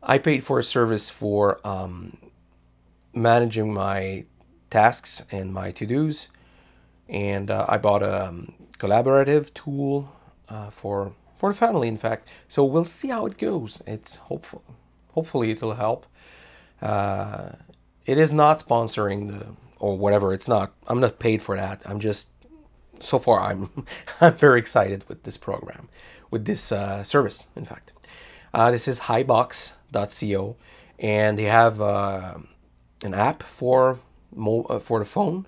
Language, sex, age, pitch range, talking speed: English, male, 30-49, 100-130 Hz, 145 wpm